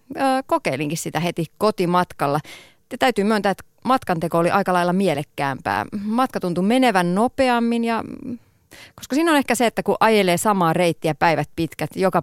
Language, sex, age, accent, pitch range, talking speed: Finnish, female, 30-49, native, 160-220 Hz, 145 wpm